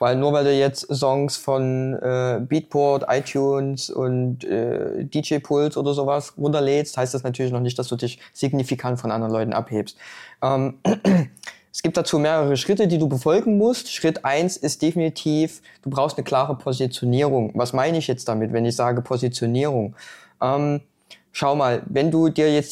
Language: German